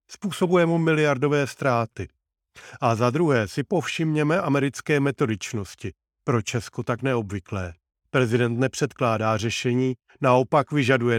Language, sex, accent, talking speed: Czech, male, native, 105 wpm